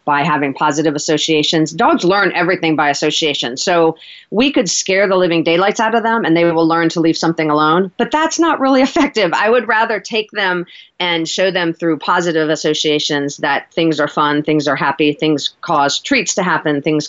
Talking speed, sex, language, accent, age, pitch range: 195 wpm, female, English, American, 40-59, 155-190 Hz